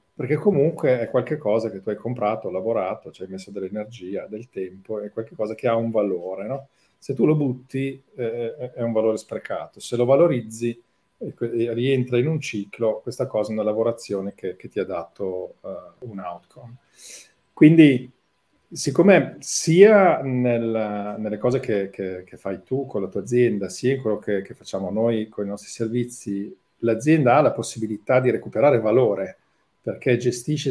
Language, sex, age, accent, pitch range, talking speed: Italian, male, 40-59, native, 105-125 Hz, 175 wpm